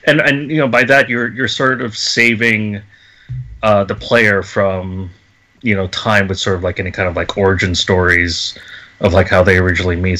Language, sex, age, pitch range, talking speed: English, male, 30-49, 100-125 Hz, 200 wpm